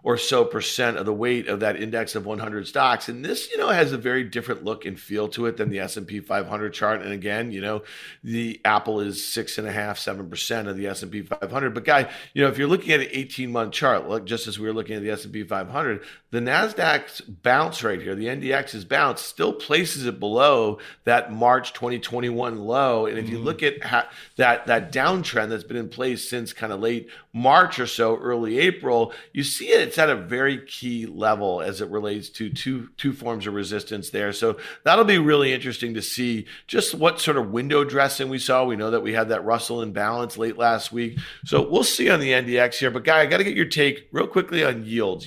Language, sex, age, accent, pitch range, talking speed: English, male, 40-59, American, 110-130 Hz, 225 wpm